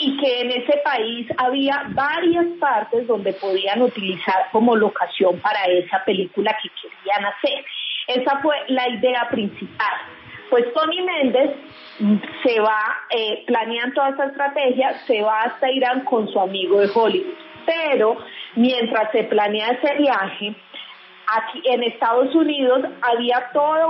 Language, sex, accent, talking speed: Spanish, female, Colombian, 135 wpm